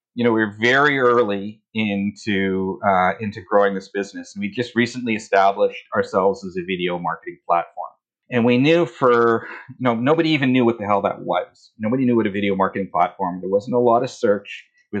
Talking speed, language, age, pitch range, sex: 205 wpm, English, 40-59, 100-140 Hz, male